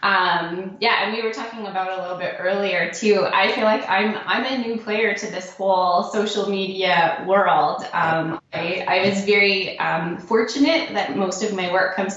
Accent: American